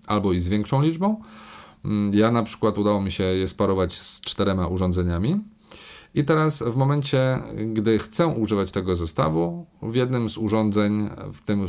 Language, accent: Polish, native